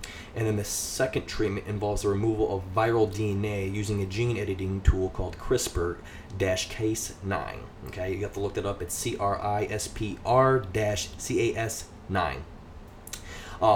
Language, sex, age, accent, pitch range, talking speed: English, male, 20-39, American, 95-110 Hz, 120 wpm